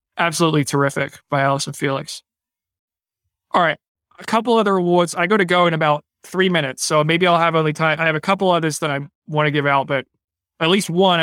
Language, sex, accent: English, male, American